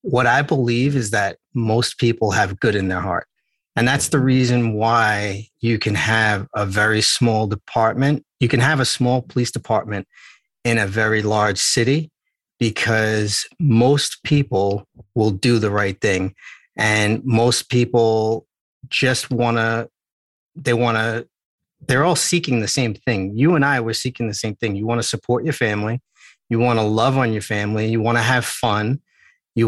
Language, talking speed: English, 175 wpm